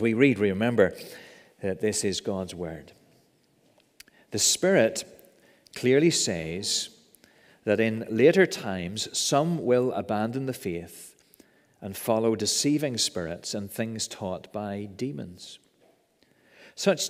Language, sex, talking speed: English, male, 110 wpm